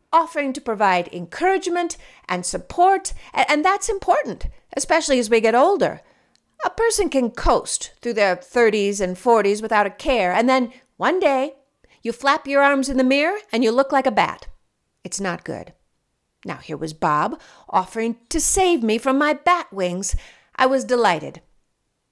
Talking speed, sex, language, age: 165 wpm, female, English, 50-69